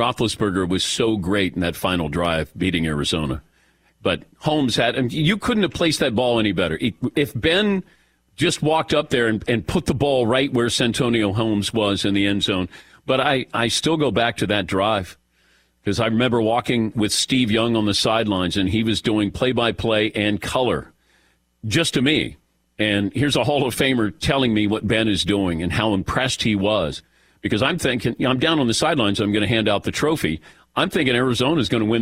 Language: English